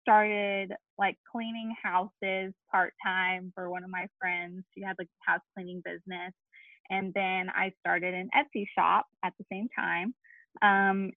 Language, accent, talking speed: English, American, 150 wpm